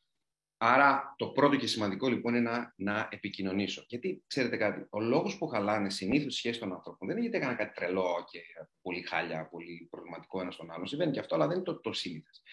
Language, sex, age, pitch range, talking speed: Greek, male, 30-49, 95-135 Hz, 215 wpm